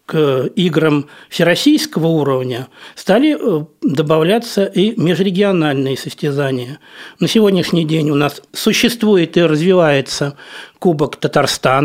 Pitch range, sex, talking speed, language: 145-195 Hz, male, 95 wpm, Russian